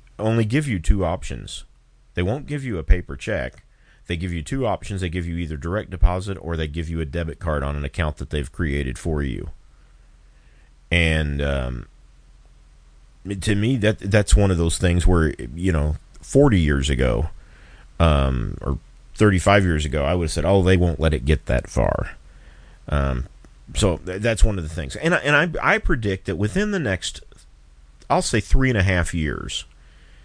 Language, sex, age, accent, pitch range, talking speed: English, male, 40-59, American, 75-100 Hz, 185 wpm